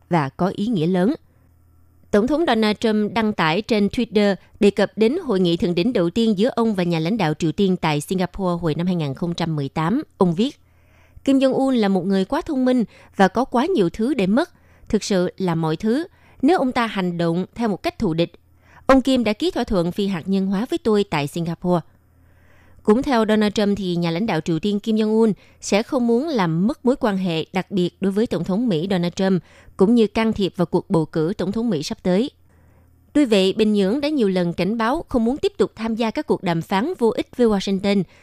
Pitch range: 170-230 Hz